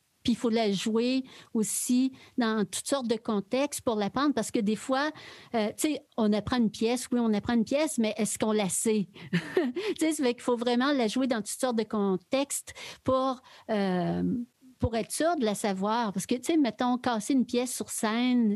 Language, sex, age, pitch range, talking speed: French, female, 50-69, 205-255 Hz, 210 wpm